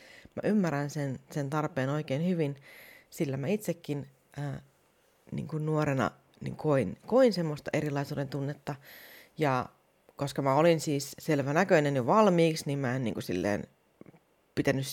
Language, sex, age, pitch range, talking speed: Finnish, female, 30-49, 130-160 Hz, 140 wpm